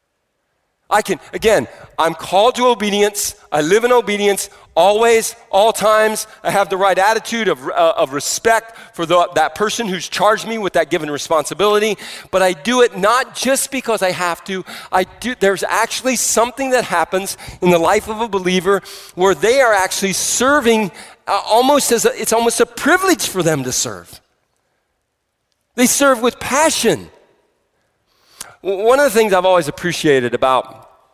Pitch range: 140-215 Hz